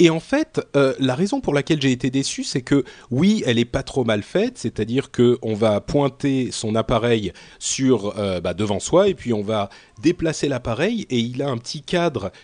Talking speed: 205 wpm